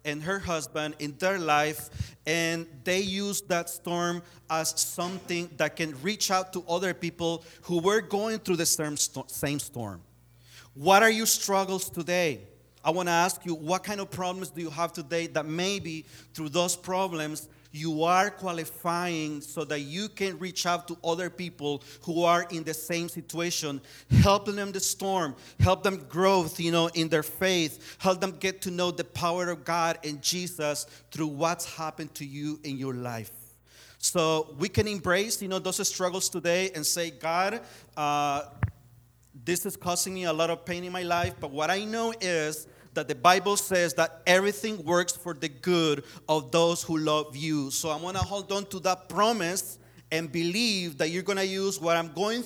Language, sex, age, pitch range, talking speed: English, male, 40-59, 150-185 Hz, 185 wpm